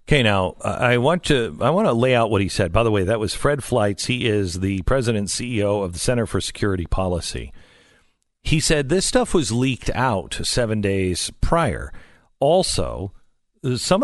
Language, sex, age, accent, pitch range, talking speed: English, male, 50-69, American, 95-135 Hz, 190 wpm